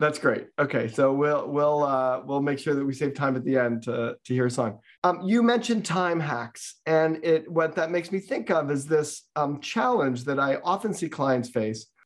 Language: English